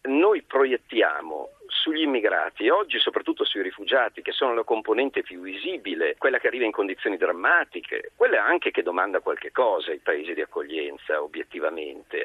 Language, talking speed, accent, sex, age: Italian, 150 wpm, native, male, 50-69